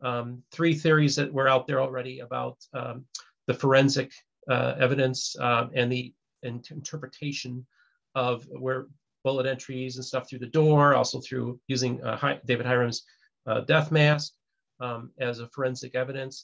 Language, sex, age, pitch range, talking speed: English, male, 40-59, 125-145 Hz, 150 wpm